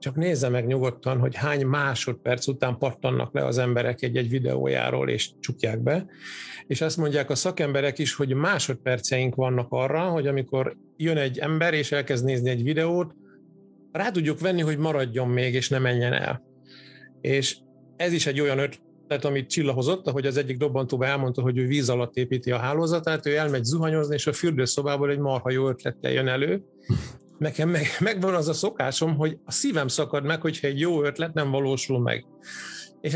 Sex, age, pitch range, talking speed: male, 50-69, 130-160 Hz, 175 wpm